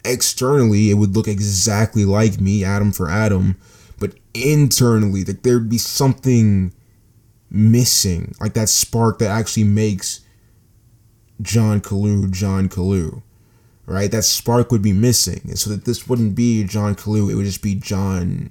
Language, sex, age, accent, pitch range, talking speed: English, male, 20-39, American, 100-115 Hz, 150 wpm